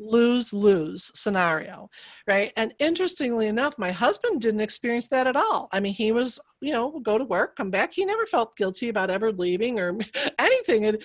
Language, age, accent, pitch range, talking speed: English, 40-59, American, 195-255 Hz, 180 wpm